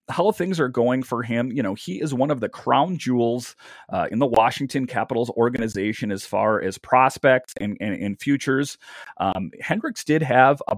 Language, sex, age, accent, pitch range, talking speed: English, male, 30-49, American, 115-135 Hz, 190 wpm